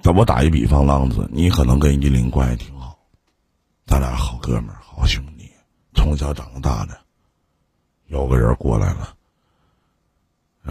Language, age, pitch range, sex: Chinese, 50-69, 70-85 Hz, male